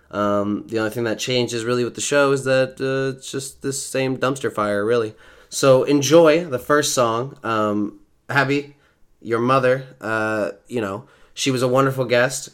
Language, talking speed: English, 175 wpm